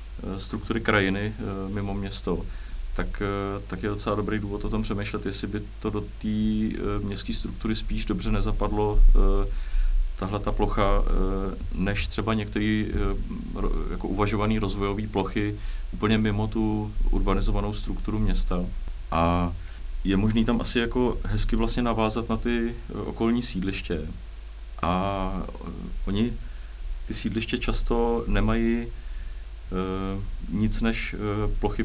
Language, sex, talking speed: Czech, male, 115 wpm